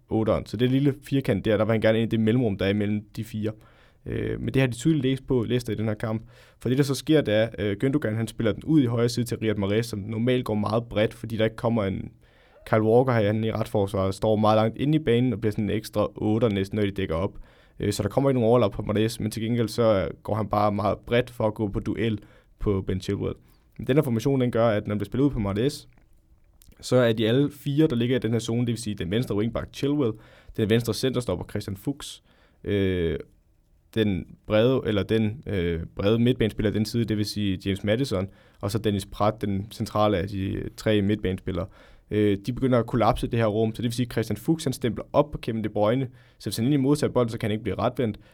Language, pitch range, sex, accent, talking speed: Danish, 105-125 Hz, male, native, 245 wpm